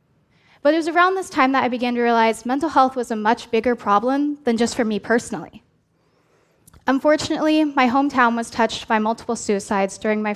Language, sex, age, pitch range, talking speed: Arabic, female, 10-29, 220-270 Hz, 190 wpm